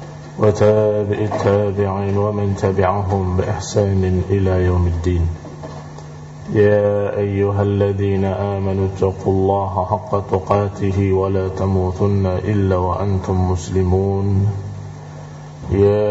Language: Indonesian